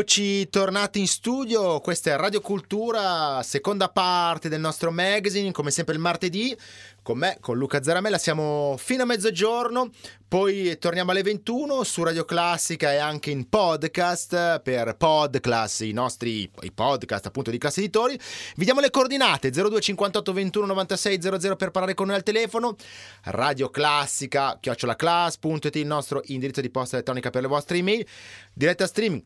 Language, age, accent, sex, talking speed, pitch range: Italian, 30-49, native, male, 150 wpm, 125-195 Hz